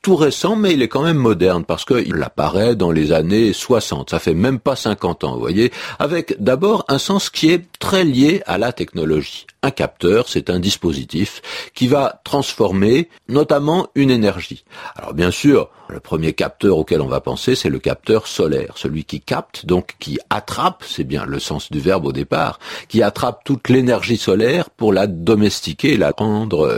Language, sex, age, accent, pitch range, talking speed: French, male, 50-69, French, 100-145 Hz, 190 wpm